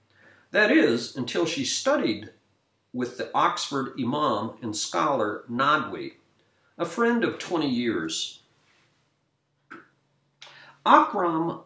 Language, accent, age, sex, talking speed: English, American, 50-69, male, 95 wpm